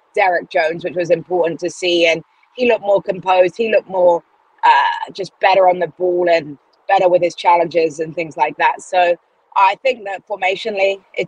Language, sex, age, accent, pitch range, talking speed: English, female, 20-39, British, 175-200 Hz, 190 wpm